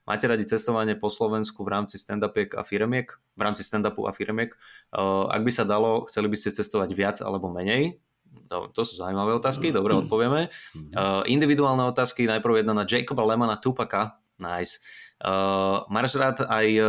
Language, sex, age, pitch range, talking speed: Slovak, male, 20-39, 100-115 Hz, 170 wpm